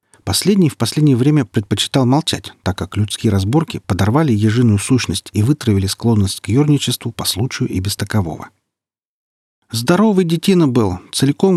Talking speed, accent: 140 wpm, native